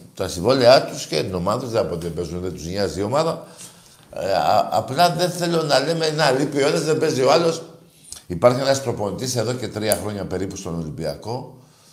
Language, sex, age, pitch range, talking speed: Greek, male, 60-79, 105-155 Hz, 165 wpm